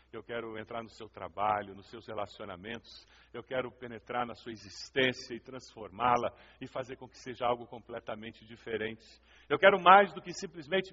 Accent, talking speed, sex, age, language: Brazilian, 170 wpm, male, 50-69, Portuguese